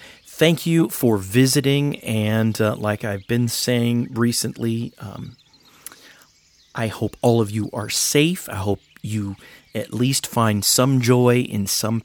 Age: 40-59